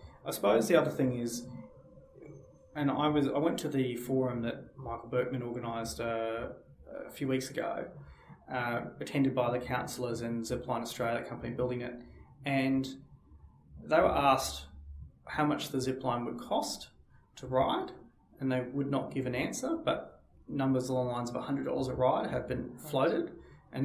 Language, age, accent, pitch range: English, 20-39, Australian, 120-135 Hz